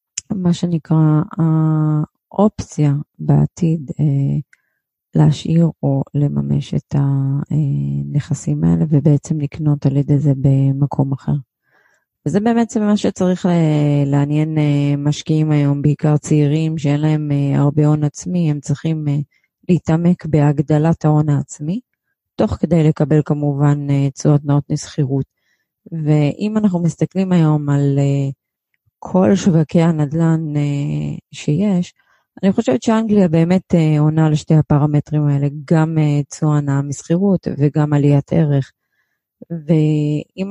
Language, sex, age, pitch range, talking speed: Hebrew, female, 30-49, 145-165 Hz, 105 wpm